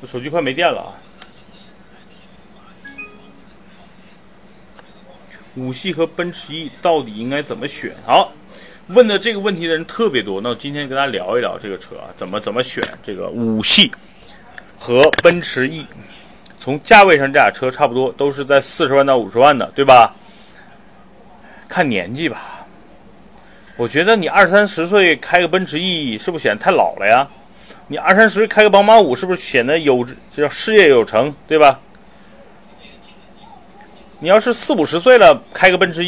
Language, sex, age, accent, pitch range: Chinese, male, 30-49, native, 140-200 Hz